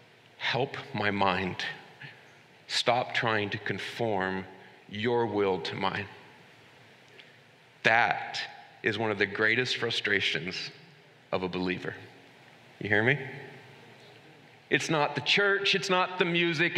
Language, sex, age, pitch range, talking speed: English, male, 40-59, 140-195 Hz, 115 wpm